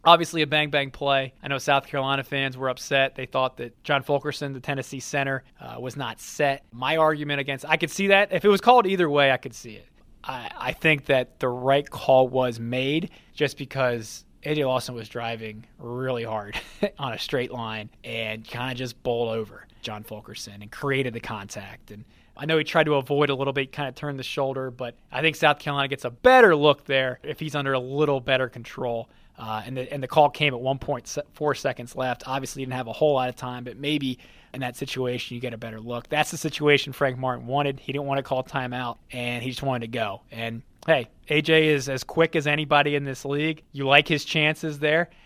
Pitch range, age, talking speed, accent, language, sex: 125-145 Hz, 20-39, 225 wpm, American, English, male